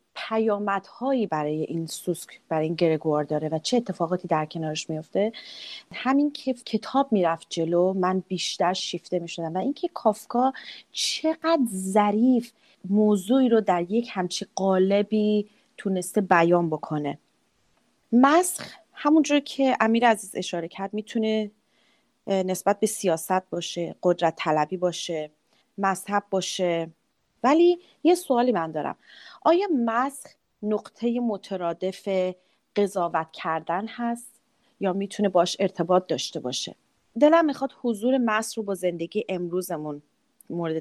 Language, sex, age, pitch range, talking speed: Persian, female, 30-49, 175-230 Hz, 120 wpm